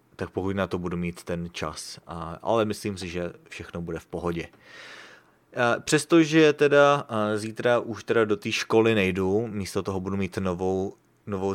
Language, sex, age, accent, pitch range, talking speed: English, male, 30-49, Czech, 90-105 Hz, 160 wpm